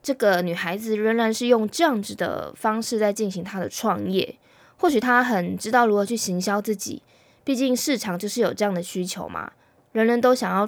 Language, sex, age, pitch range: Chinese, female, 20-39, 190-240 Hz